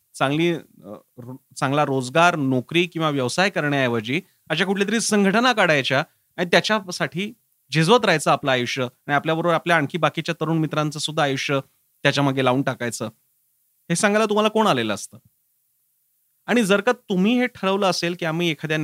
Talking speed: 75 wpm